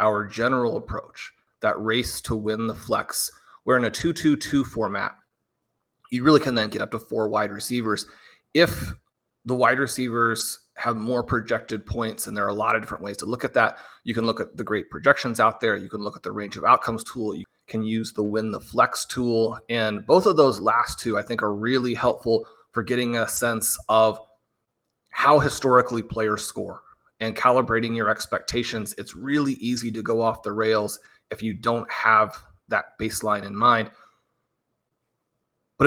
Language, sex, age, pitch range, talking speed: English, male, 30-49, 110-125 Hz, 185 wpm